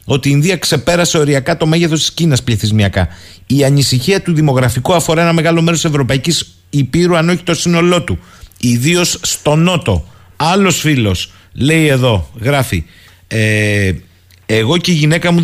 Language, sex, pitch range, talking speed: Greek, male, 120-170 Hz, 155 wpm